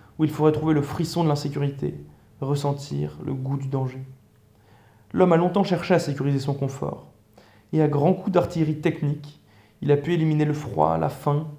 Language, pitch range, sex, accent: French, 130-155 Hz, male, French